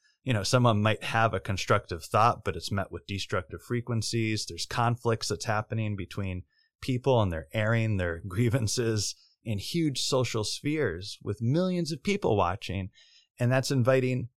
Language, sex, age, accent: English, male, 30-49, American